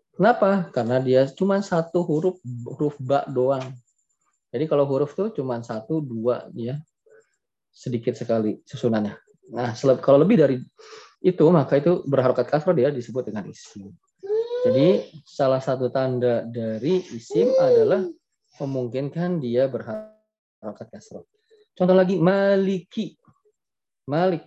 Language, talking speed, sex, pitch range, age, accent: Indonesian, 120 wpm, male, 130-200 Hz, 20-39, native